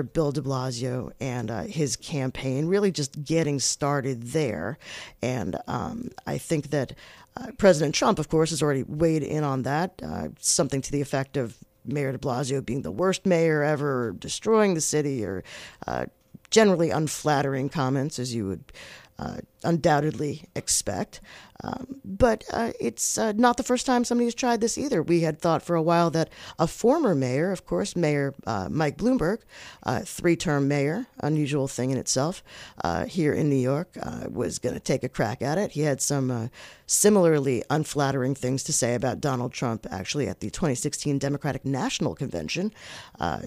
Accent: American